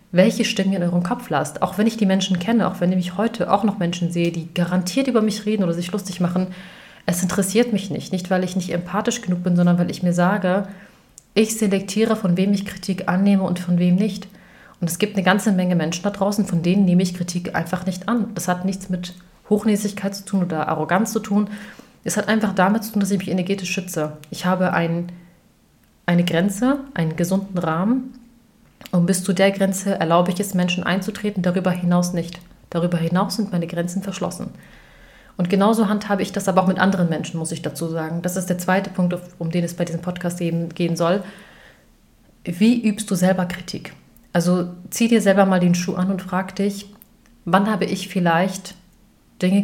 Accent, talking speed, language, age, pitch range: German, 210 wpm, German, 30-49, 175-200 Hz